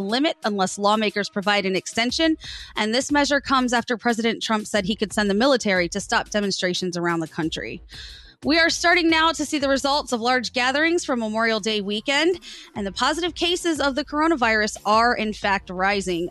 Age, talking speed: 20-39, 190 wpm